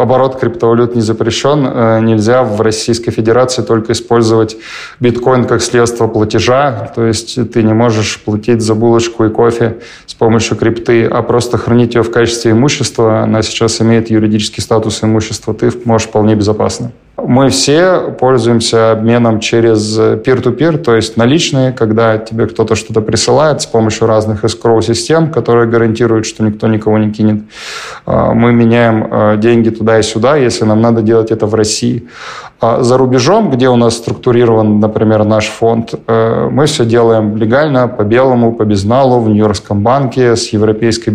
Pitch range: 110-125 Hz